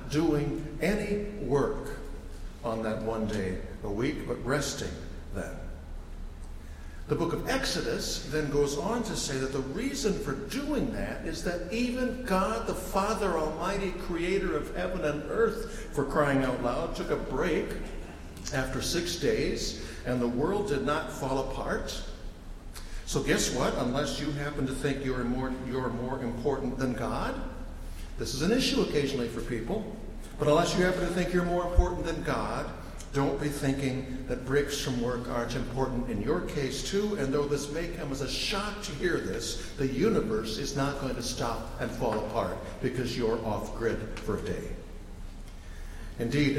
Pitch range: 105-150 Hz